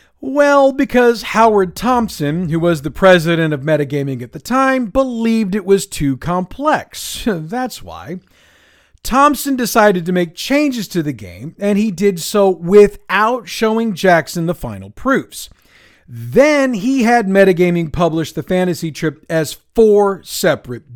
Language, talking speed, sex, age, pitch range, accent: English, 140 wpm, male, 40-59, 155-220 Hz, American